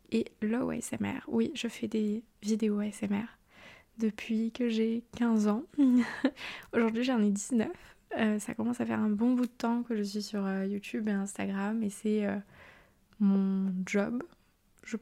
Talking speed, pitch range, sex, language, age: 165 wpm, 200-225 Hz, female, French, 20-39